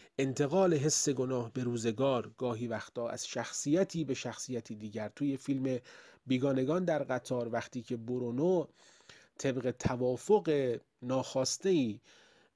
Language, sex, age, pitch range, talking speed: Persian, male, 30-49, 115-145 Hz, 110 wpm